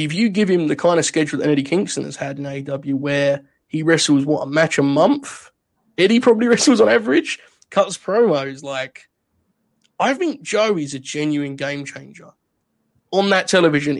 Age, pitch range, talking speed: 20-39, 145-190 Hz, 180 wpm